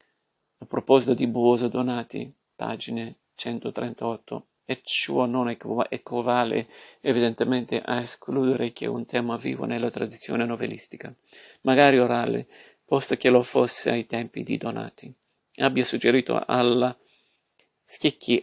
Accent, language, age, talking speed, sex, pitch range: native, Italian, 50-69, 120 wpm, male, 120-125 Hz